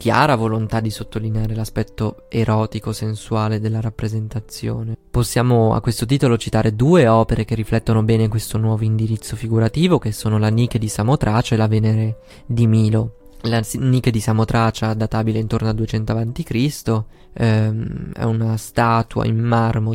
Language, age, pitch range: Italian, 20-39, 110-120 Hz